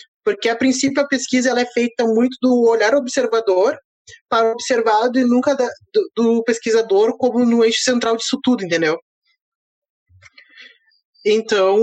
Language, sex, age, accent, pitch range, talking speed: Portuguese, male, 20-39, Brazilian, 220-265 Hz, 145 wpm